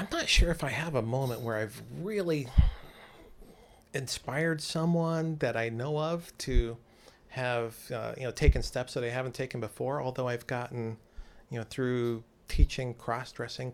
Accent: American